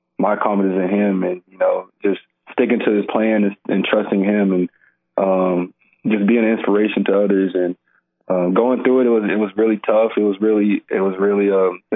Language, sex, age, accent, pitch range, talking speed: English, male, 20-39, American, 95-105 Hz, 215 wpm